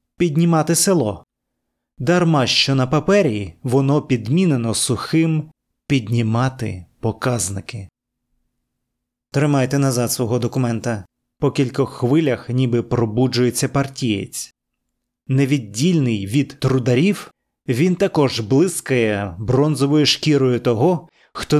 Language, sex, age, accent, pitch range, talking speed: Ukrainian, male, 30-49, native, 120-150 Hz, 85 wpm